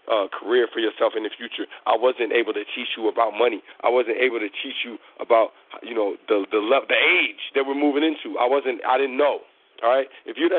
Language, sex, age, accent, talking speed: English, male, 40-59, American, 230 wpm